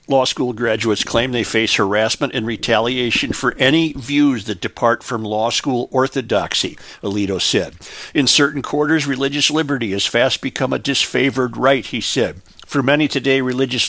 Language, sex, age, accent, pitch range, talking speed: English, male, 50-69, American, 110-135 Hz, 160 wpm